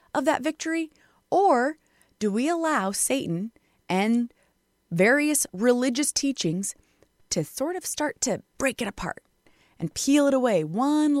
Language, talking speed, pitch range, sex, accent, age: English, 135 wpm, 170-245 Hz, female, American, 20-39